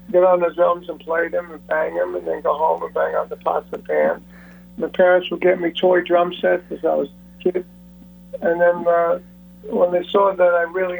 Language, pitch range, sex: English, 175-185 Hz, male